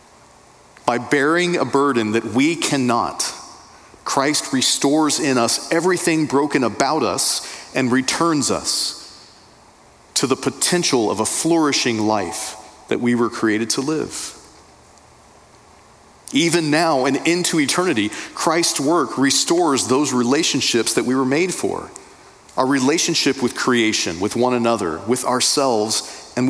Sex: male